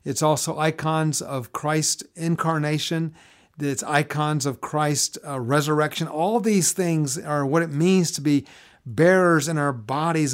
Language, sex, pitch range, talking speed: English, male, 135-165 Hz, 140 wpm